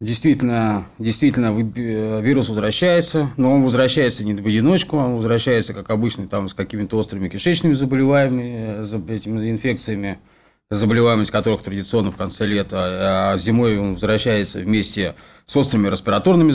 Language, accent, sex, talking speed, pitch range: Russian, native, male, 125 wpm, 105-130 Hz